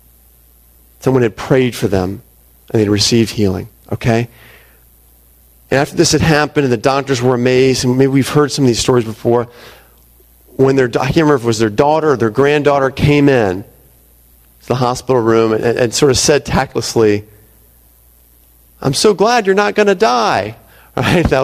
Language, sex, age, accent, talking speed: English, male, 40-59, American, 185 wpm